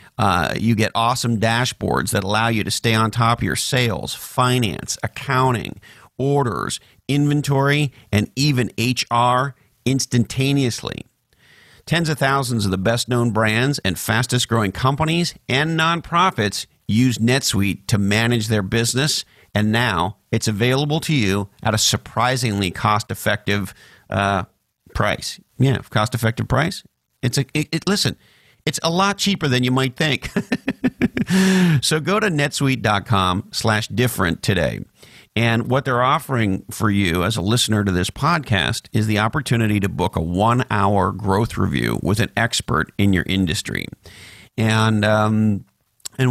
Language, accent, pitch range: English, American, 100-130 Hz